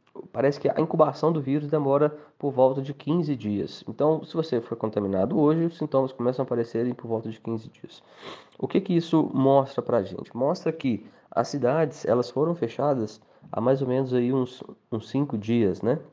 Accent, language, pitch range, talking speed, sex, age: Brazilian, Portuguese, 115-140 Hz, 195 wpm, male, 20-39